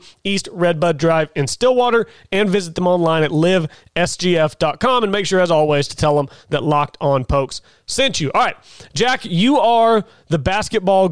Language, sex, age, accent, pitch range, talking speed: English, male, 30-49, American, 165-205 Hz, 175 wpm